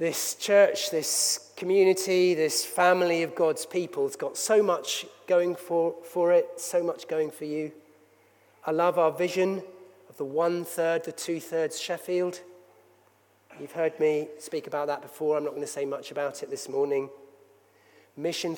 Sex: male